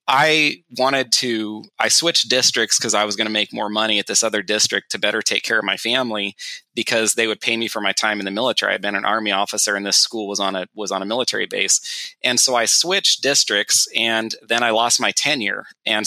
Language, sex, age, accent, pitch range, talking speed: English, male, 30-49, American, 105-120 Hz, 240 wpm